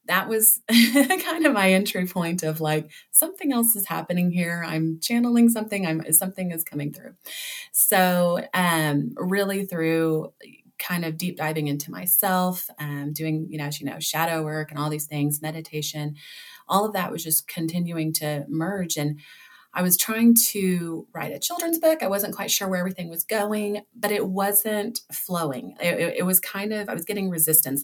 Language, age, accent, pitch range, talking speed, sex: English, 30-49, American, 155-205 Hz, 185 wpm, female